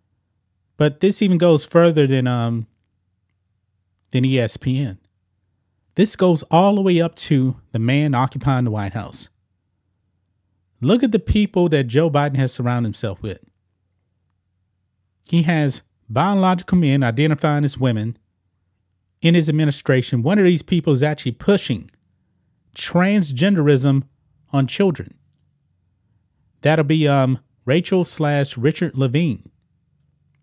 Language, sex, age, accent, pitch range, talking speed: English, male, 30-49, American, 110-155 Hz, 120 wpm